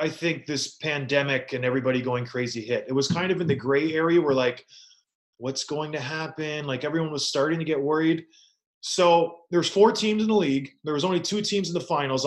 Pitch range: 135-170 Hz